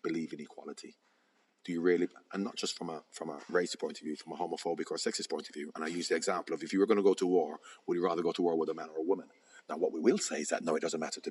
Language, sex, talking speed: Romanian, male, 340 wpm